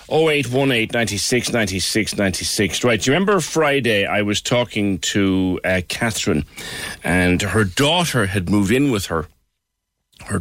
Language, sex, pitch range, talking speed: English, male, 85-110 Hz, 175 wpm